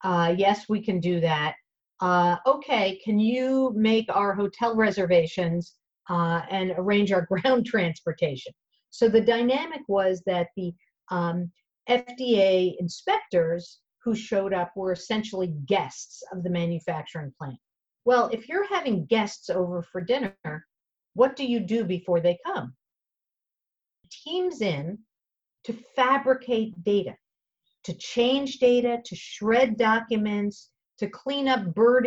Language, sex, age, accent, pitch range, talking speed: English, female, 50-69, American, 180-235 Hz, 130 wpm